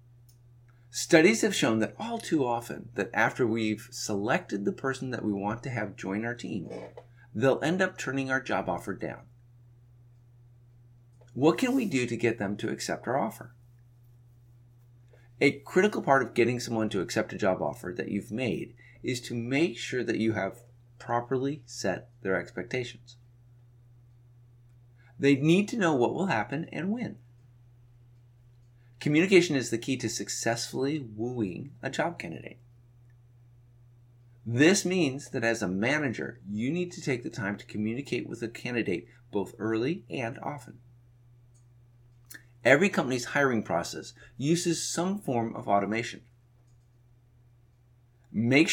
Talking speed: 140 wpm